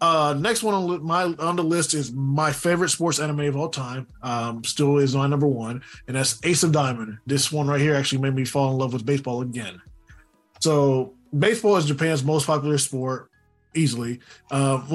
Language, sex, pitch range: English, male, 135-165 Hz